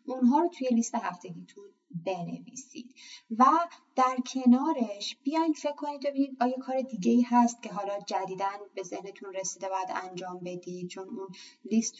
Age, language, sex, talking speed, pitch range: 30-49, Persian, female, 155 wpm, 190-250 Hz